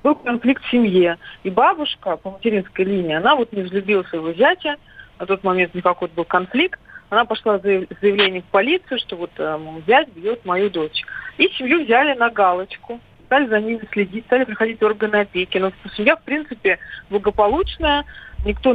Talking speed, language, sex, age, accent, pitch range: 170 wpm, Russian, female, 40-59, native, 180-240 Hz